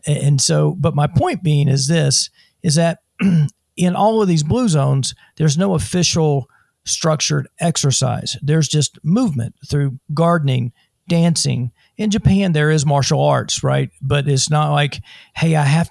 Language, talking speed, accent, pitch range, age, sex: English, 155 wpm, American, 135-160 Hz, 50-69, male